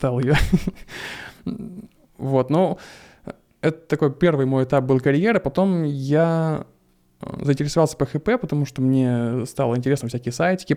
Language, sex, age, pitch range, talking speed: Russian, male, 20-39, 125-150 Hz, 130 wpm